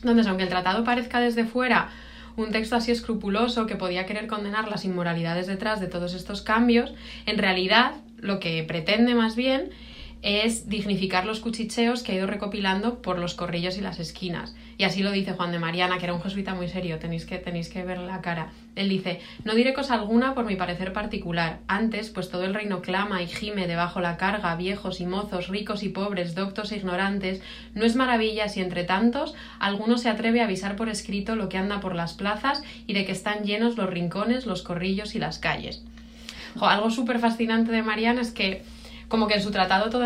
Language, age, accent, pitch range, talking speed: Spanish, 20-39, Spanish, 185-230 Hz, 205 wpm